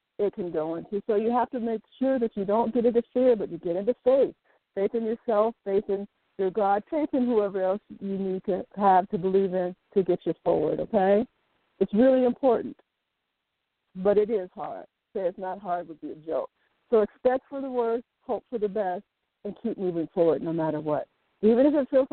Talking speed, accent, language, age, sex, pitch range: 215 wpm, American, English, 50-69, female, 185-230 Hz